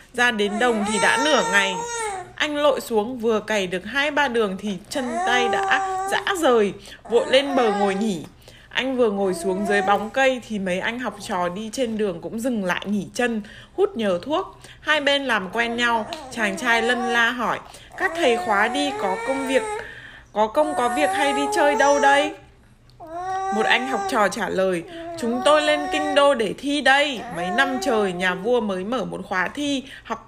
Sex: female